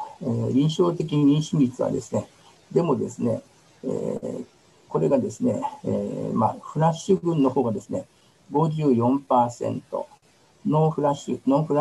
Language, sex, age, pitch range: Japanese, male, 50-69, 120-150 Hz